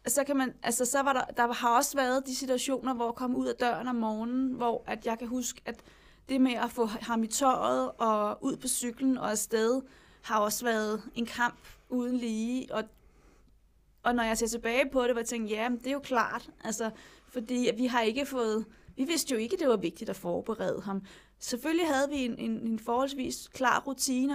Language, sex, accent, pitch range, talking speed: Danish, female, native, 225-260 Hz, 220 wpm